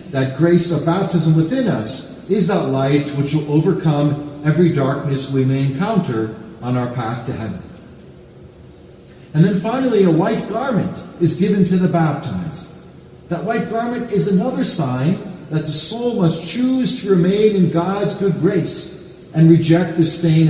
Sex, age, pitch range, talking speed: male, 50-69, 150-195 Hz, 160 wpm